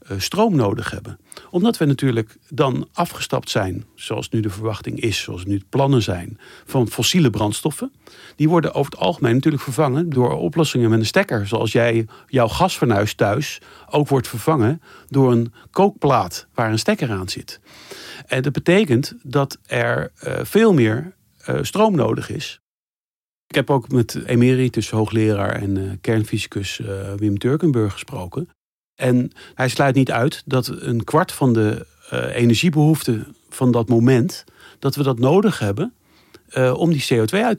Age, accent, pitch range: 50-69, Dutch, 110-150 Hz